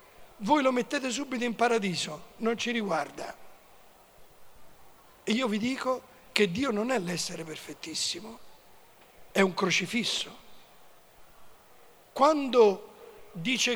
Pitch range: 215-265 Hz